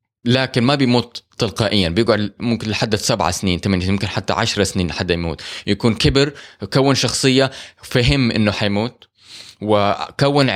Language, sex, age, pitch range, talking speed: Arabic, male, 20-39, 100-130 Hz, 140 wpm